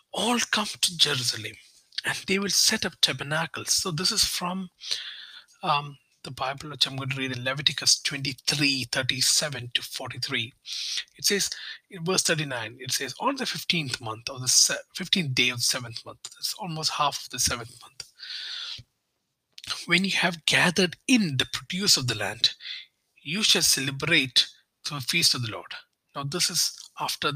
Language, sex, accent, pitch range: English, male, Indian, 125-170 Hz